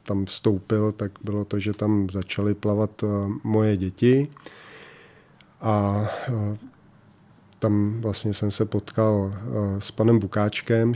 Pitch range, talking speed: 105-115 Hz, 95 wpm